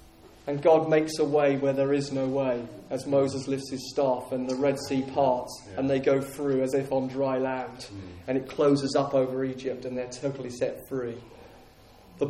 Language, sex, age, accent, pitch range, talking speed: English, male, 30-49, British, 135-190 Hz, 200 wpm